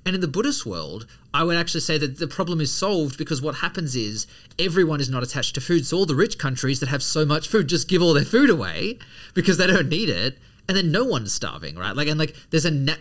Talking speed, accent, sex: 265 wpm, Australian, male